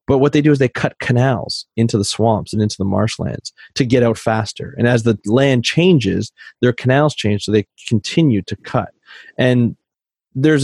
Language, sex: English, male